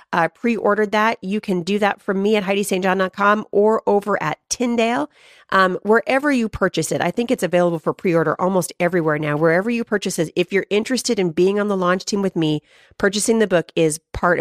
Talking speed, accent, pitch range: 205 wpm, American, 165-200 Hz